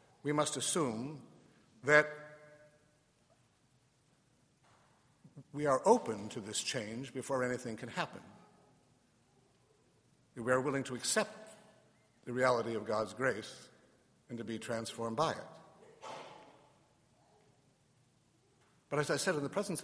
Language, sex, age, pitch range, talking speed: English, male, 60-79, 125-150 Hz, 110 wpm